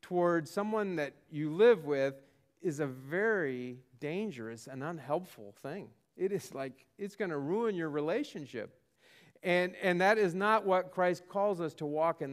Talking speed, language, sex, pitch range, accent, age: 165 wpm, English, male, 160-220 Hz, American, 40-59